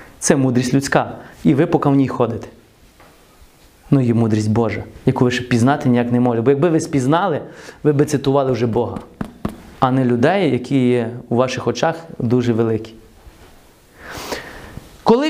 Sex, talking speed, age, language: male, 155 wpm, 30-49, Ukrainian